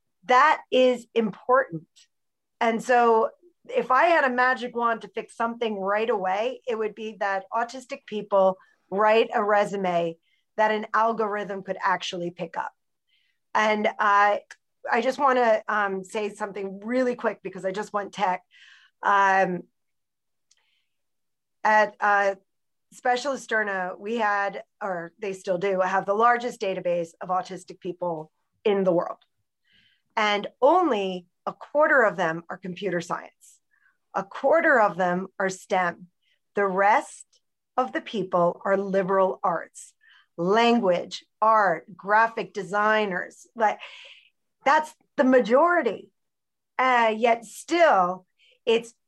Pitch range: 190-235 Hz